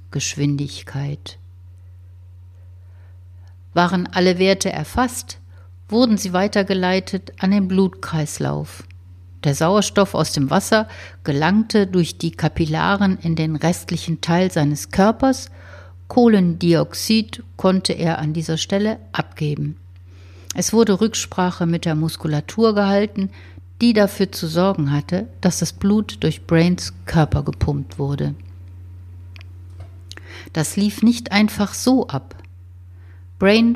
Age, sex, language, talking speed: 60-79, female, German, 105 wpm